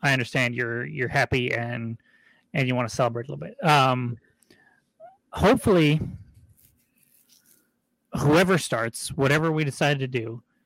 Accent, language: American, English